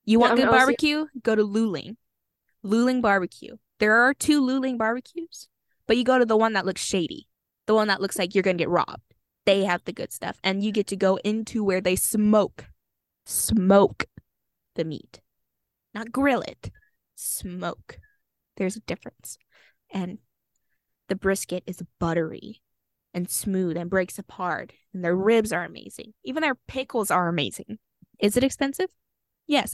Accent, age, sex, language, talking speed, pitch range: American, 10-29, female, English, 165 wpm, 185-250 Hz